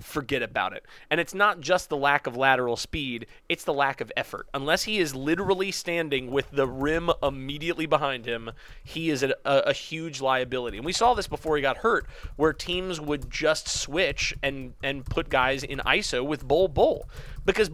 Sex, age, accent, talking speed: male, 30-49, American, 195 wpm